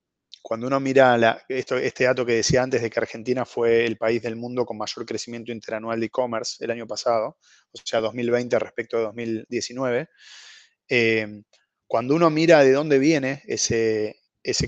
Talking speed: 170 wpm